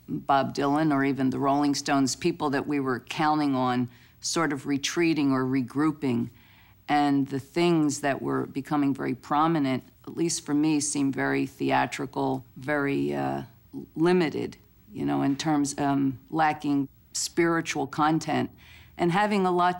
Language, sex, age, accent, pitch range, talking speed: English, female, 50-69, American, 135-155 Hz, 145 wpm